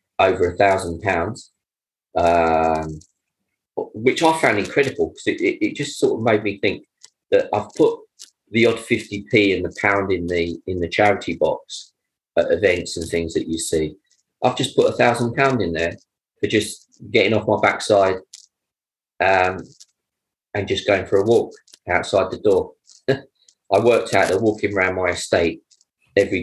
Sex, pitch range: male, 85-125 Hz